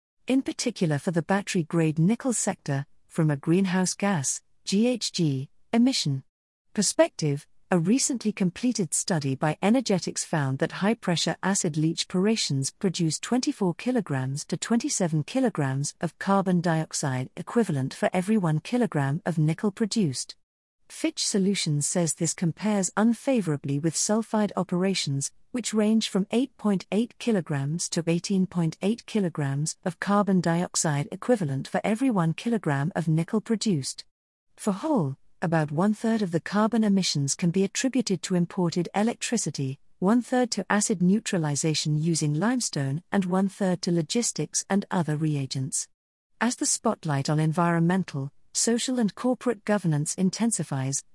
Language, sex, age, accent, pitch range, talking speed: English, female, 50-69, British, 155-210 Hz, 125 wpm